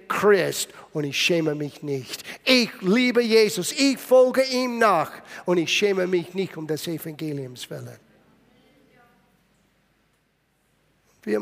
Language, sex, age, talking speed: German, male, 50-69, 115 wpm